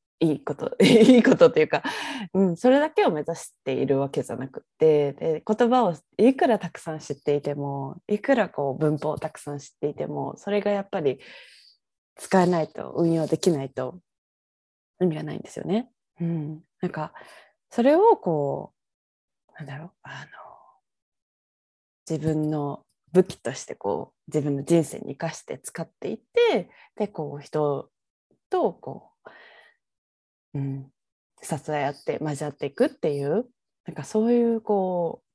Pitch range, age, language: 145-210 Hz, 20-39, Japanese